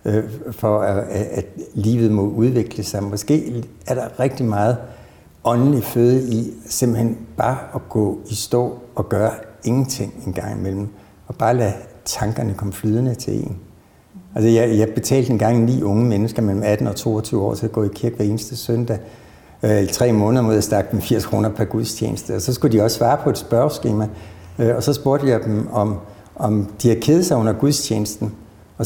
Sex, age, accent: male, 60-79, native